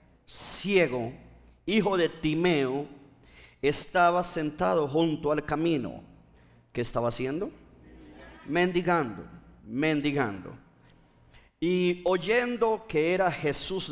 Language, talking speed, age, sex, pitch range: Spanish, 80 wpm, 40-59, male, 145-205 Hz